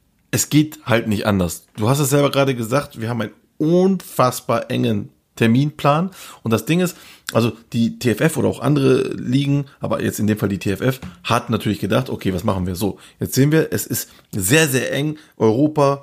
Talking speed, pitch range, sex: 195 wpm, 105-140 Hz, male